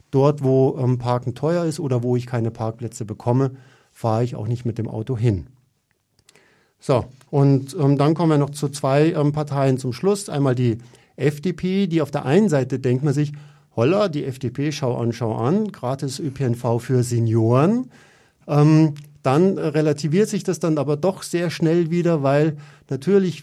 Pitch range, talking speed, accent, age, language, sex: 125-155 Hz, 175 wpm, German, 50-69, German, male